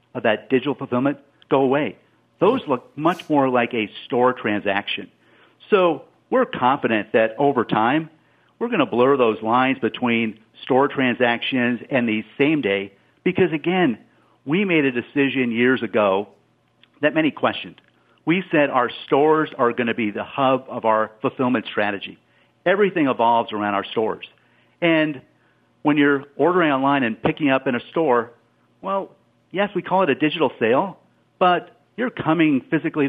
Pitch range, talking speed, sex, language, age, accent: 125-165 Hz, 150 wpm, male, English, 50-69, American